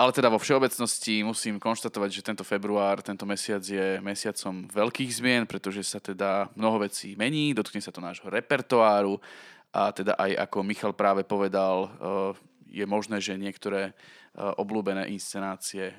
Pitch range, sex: 95-110 Hz, male